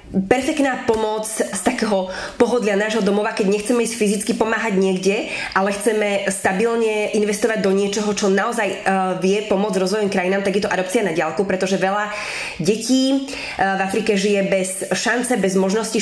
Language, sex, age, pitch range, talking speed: Slovak, female, 20-39, 190-215 Hz, 155 wpm